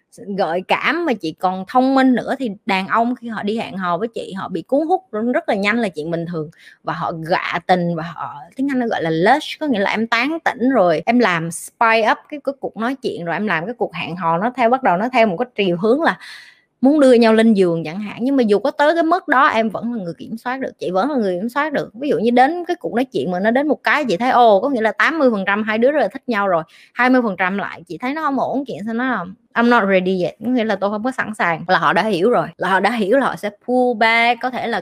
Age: 20-39